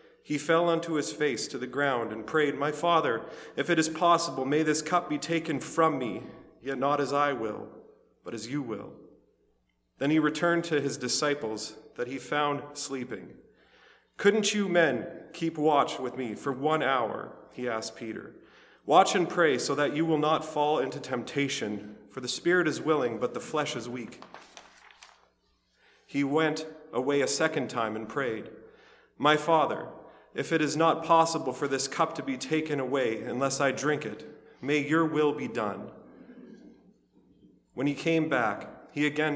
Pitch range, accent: 130-160 Hz, American